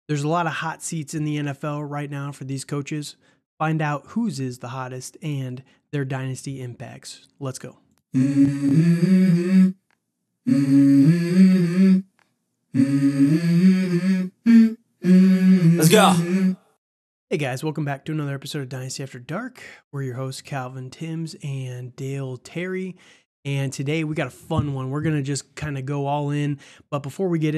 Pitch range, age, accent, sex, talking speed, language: 135-165 Hz, 20-39, American, male, 145 wpm, English